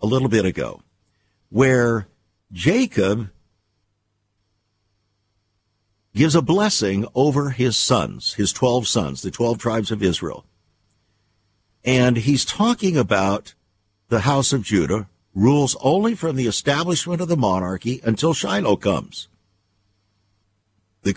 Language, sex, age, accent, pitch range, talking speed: English, male, 60-79, American, 100-145 Hz, 115 wpm